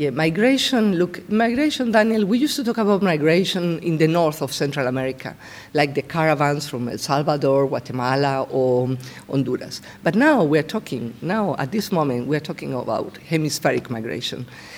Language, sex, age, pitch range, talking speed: English, female, 50-69, 145-225 Hz, 160 wpm